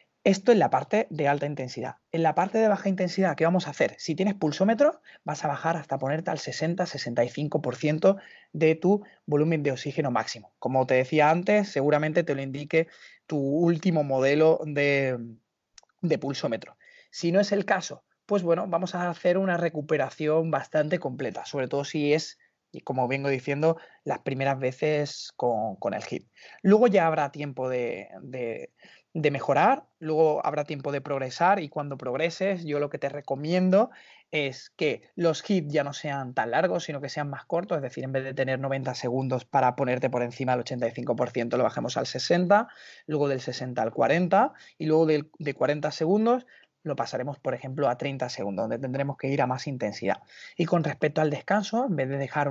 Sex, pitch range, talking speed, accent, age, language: male, 135-170 Hz, 185 wpm, Spanish, 30-49, Spanish